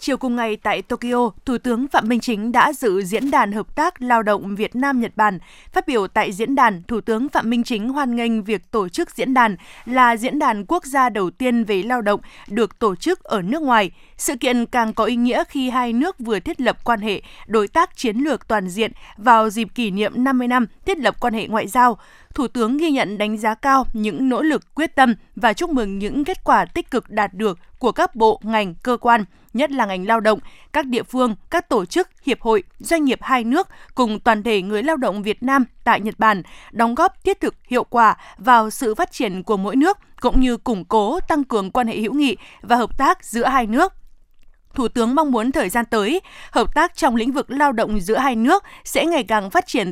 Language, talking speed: Vietnamese, 230 wpm